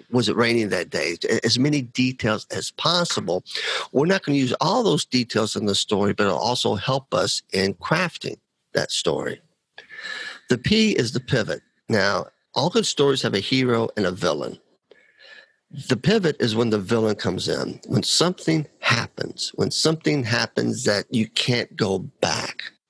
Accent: American